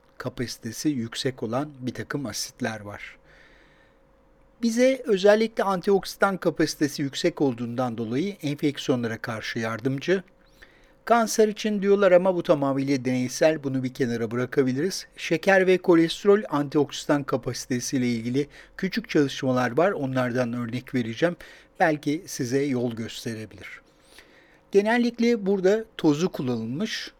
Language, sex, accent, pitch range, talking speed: Turkish, male, native, 125-165 Hz, 110 wpm